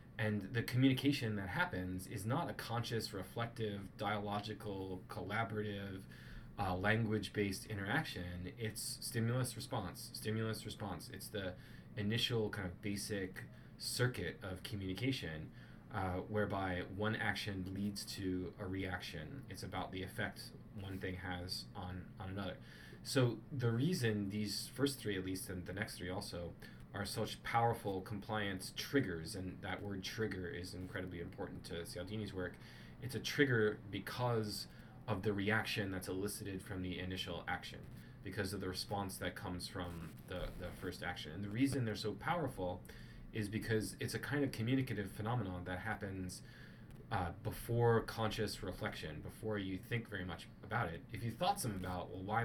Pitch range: 95-115 Hz